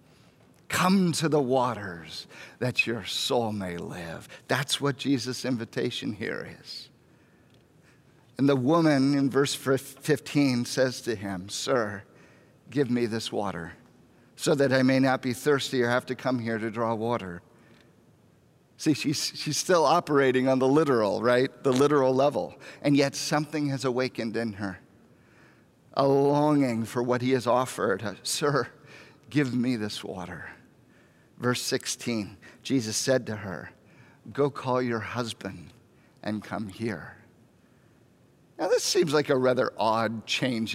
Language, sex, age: English, male, 50-69